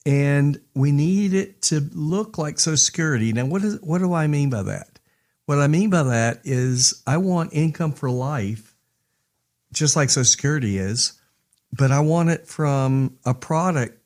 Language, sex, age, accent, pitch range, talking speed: English, male, 50-69, American, 115-145 Hz, 175 wpm